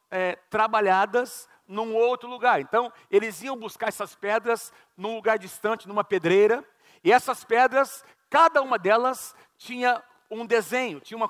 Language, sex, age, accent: Portuguese, male, 50-69, Brazilian